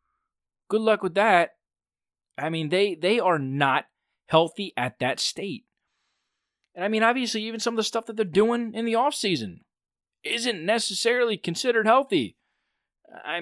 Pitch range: 140-200 Hz